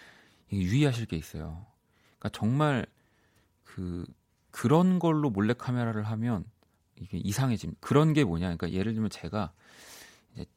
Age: 40-59